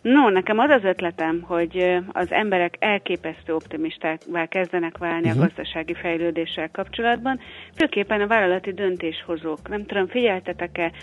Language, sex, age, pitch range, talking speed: Hungarian, female, 30-49, 170-200 Hz, 125 wpm